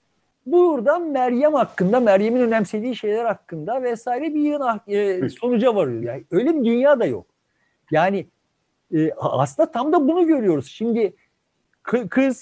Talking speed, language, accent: 140 wpm, Turkish, native